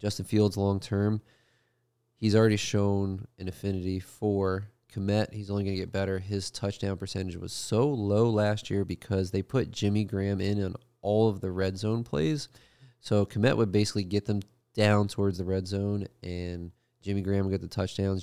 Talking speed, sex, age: 180 wpm, male, 30-49